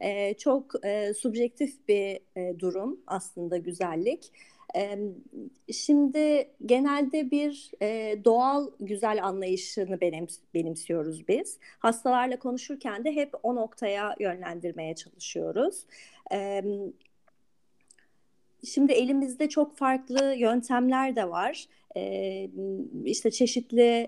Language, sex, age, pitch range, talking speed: Turkish, female, 30-49, 205-275 Hz, 95 wpm